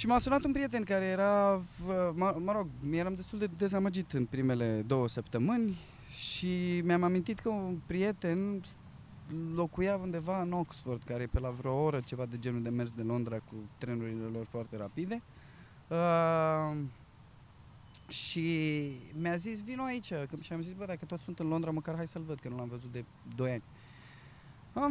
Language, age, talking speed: Romanian, 20-39, 175 wpm